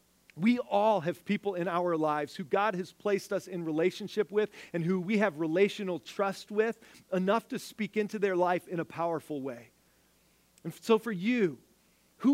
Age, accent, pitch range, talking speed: 40-59, American, 185-240 Hz, 180 wpm